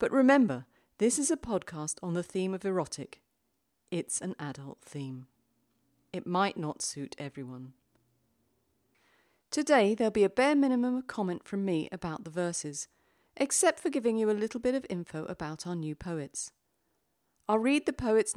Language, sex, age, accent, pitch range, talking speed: English, female, 40-59, British, 145-220 Hz, 165 wpm